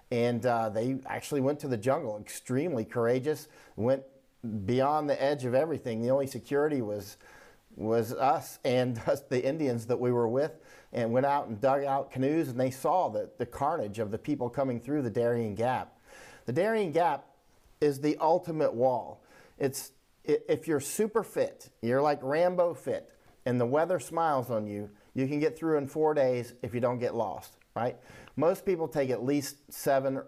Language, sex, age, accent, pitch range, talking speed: English, male, 40-59, American, 115-145 Hz, 180 wpm